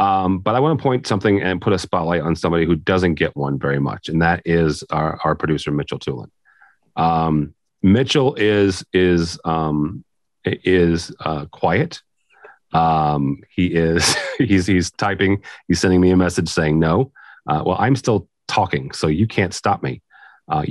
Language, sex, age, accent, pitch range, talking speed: English, male, 40-59, American, 80-100 Hz, 170 wpm